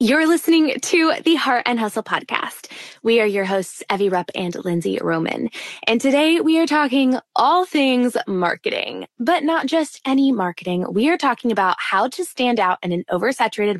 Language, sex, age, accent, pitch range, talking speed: English, female, 20-39, American, 175-240 Hz, 180 wpm